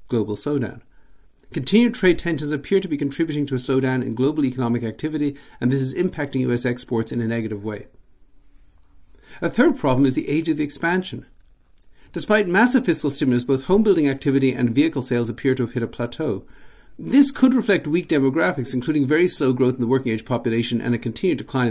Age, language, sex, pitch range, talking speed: 50-69, English, male, 115-150 Hz, 195 wpm